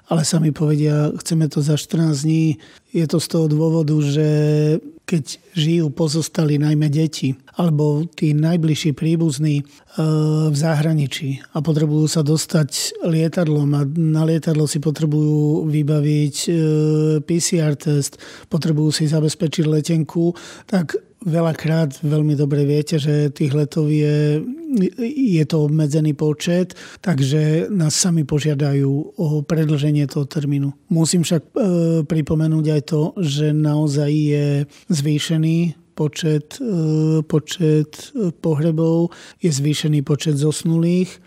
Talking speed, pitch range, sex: 120 wpm, 150-165 Hz, male